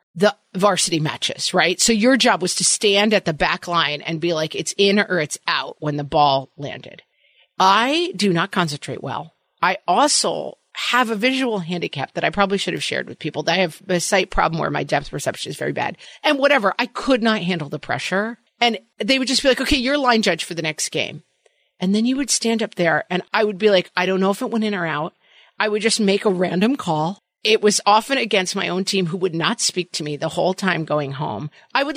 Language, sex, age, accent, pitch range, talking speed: English, female, 40-59, American, 175-230 Hz, 240 wpm